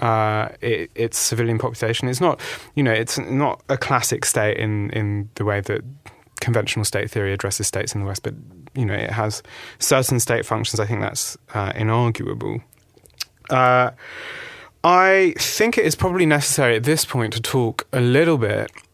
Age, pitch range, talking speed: 20-39, 105-125 Hz, 175 wpm